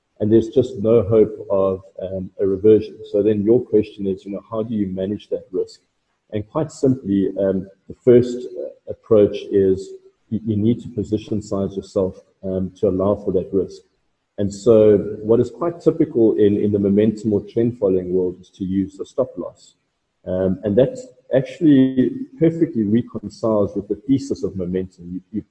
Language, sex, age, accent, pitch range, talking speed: English, male, 40-59, South African, 95-125 Hz, 175 wpm